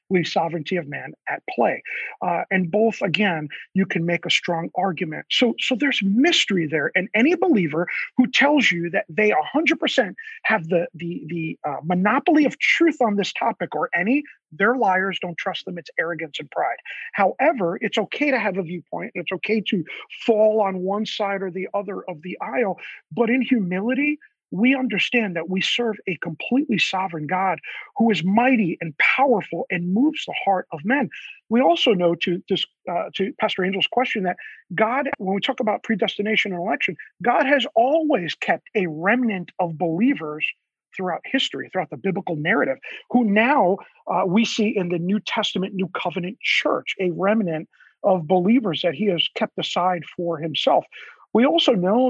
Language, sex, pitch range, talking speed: English, male, 180-245 Hz, 175 wpm